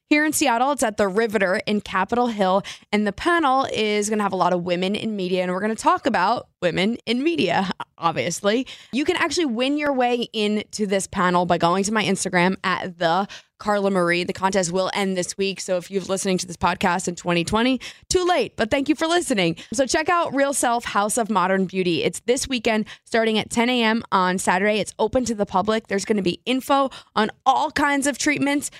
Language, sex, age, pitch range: English, female, 20-39, 185-250 Hz